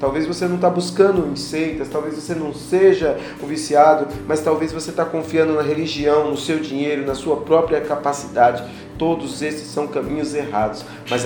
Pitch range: 140-165 Hz